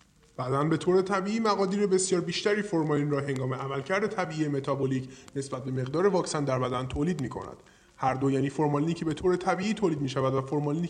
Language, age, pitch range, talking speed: Persian, 20-39, 135-180 Hz, 180 wpm